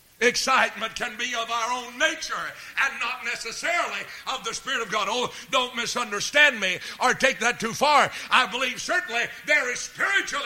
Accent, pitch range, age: American, 215-275 Hz, 60-79